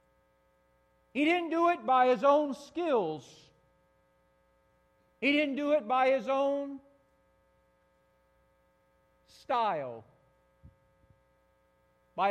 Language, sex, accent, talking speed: English, male, American, 85 wpm